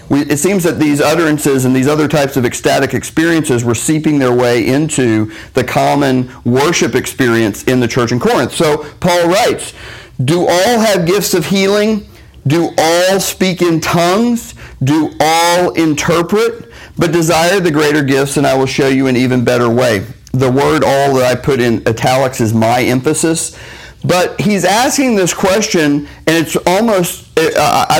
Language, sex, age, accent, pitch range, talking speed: English, male, 40-59, American, 130-175 Hz, 165 wpm